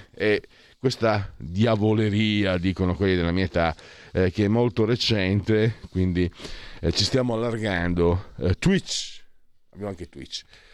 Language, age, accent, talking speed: Italian, 40-59, native, 130 wpm